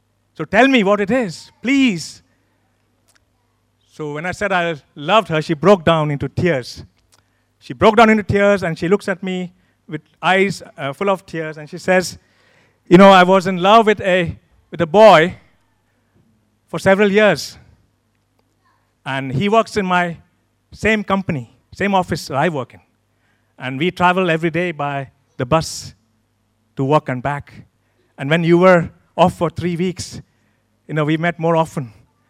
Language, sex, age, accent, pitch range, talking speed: English, male, 50-69, Indian, 115-190 Hz, 165 wpm